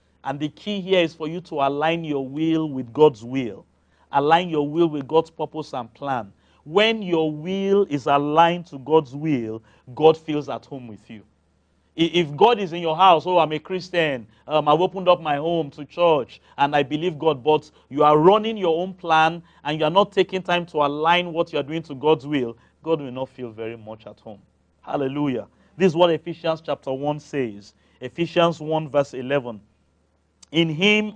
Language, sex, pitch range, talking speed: English, male, 140-175 Hz, 195 wpm